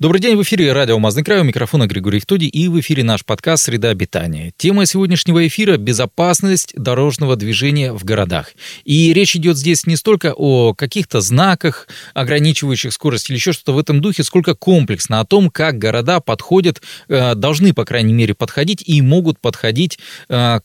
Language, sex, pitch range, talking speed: Russian, male, 120-170 Hz, 170 wpm